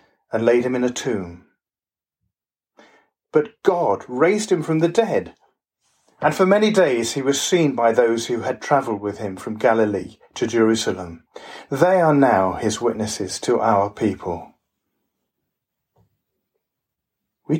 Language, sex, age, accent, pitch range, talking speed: English, male, 40-59, British, 115-165 Hz, 135 wpm